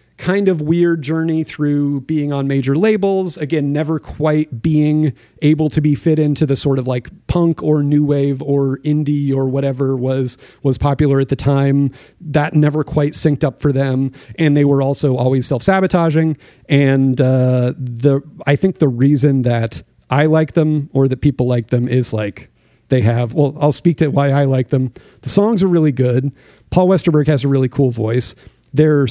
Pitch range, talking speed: 135-155 Hz, 185 wpm